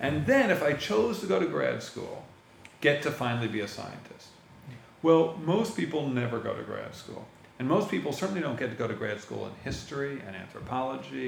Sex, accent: male, American